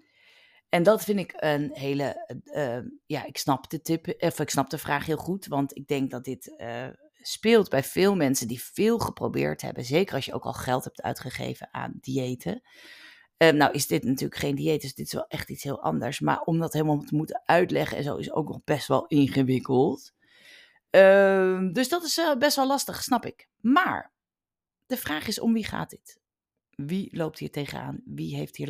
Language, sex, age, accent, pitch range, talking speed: Dutch, female, 40-59, Dutch, 140-225 Hz, 205 wpm